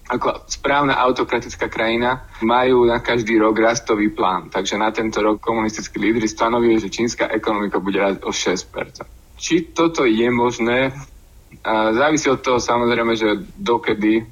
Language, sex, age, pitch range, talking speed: Slovak, male, 20-39, 110-130 Hz, 145 wpm